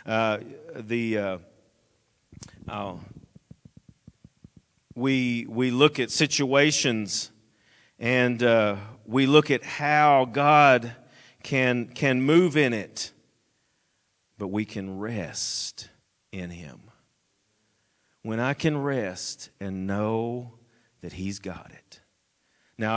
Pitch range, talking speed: 110-140 Hz, 100 wpm